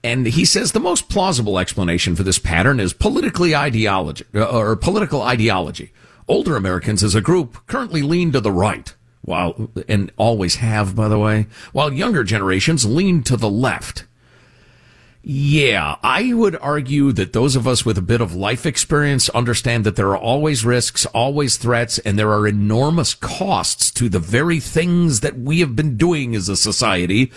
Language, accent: English, American